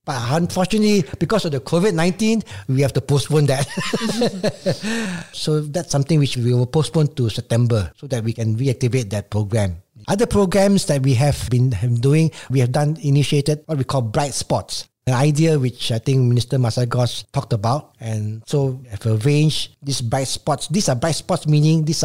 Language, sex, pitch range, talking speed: English, male, 115-150 Hz, 180 wpm